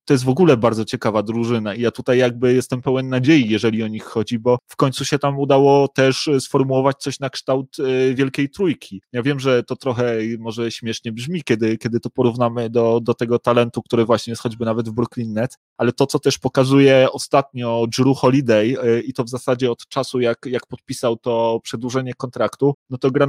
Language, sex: Polish, male